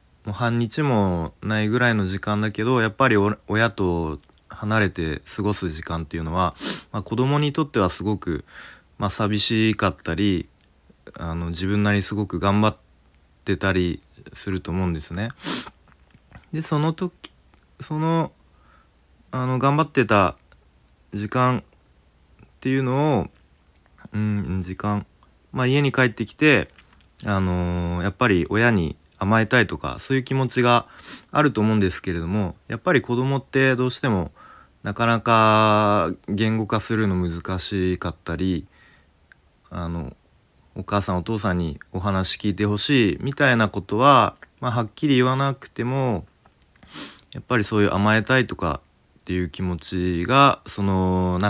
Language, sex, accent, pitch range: Japanese, male, native, 90-120 Hz